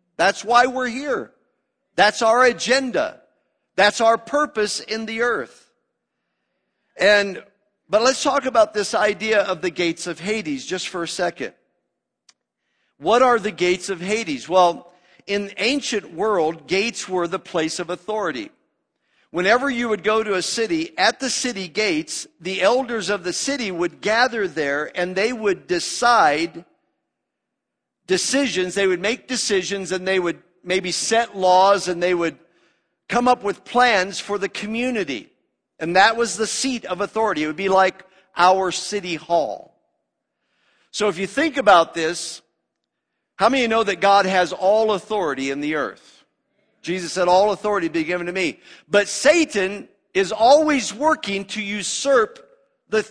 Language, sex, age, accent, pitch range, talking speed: English, male, 50-69, American, 185-240 Hz, 155 wpm